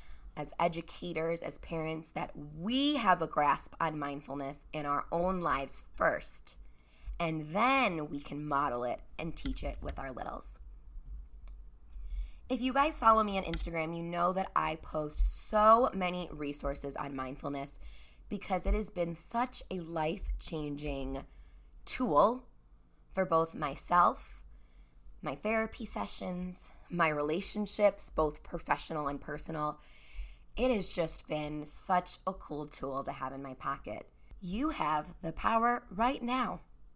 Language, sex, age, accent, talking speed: English, female, 20-39, American, 140 wpm